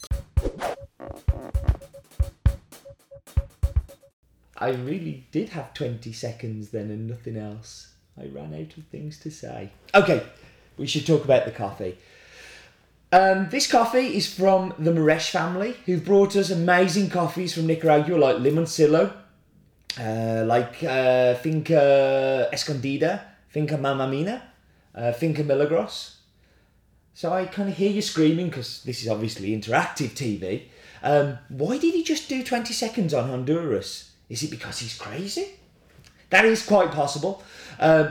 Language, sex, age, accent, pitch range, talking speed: English, male, 30-49, British, 130-180 Hz, 130 wpm